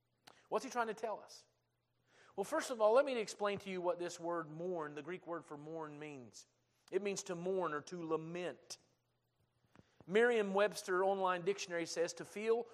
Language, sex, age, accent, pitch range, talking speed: English, male, 40-59, American, 165-210 Hz, 180 wpm